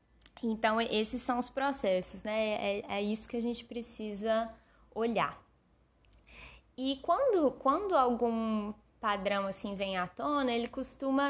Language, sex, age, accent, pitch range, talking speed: Portuguese, female, 10-29, Brazilian, 195-230 Hz, 135 wpm